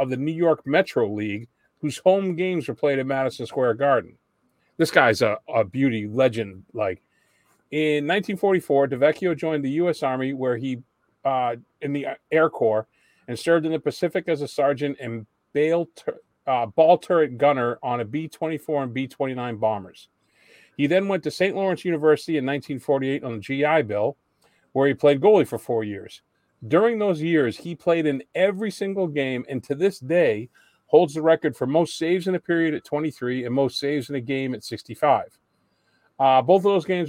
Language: English